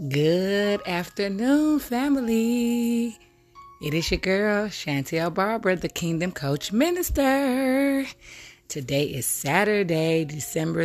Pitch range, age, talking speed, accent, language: 145-180 Hz, 30-49, 95 wpm, American, English